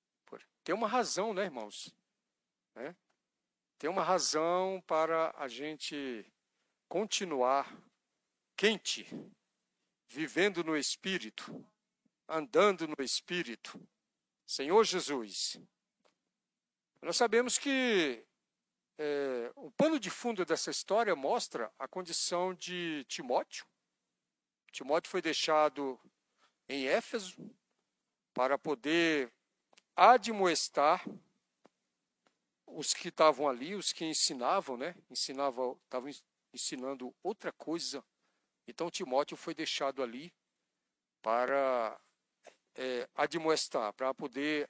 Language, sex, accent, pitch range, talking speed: Portuguese, male, Brazilian, 140-185 Hz, 85 wpm